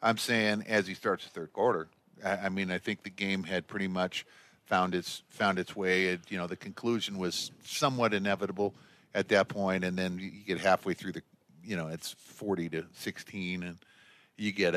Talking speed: 200 wpm